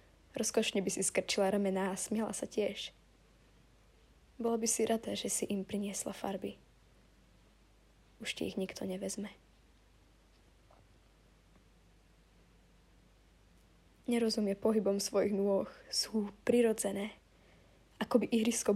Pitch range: 135-210 Hz